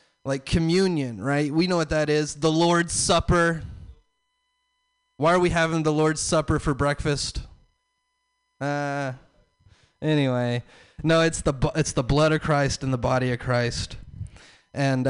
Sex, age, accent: male, 20-39, American